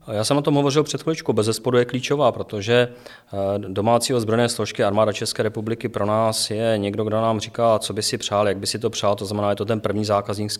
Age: 30-49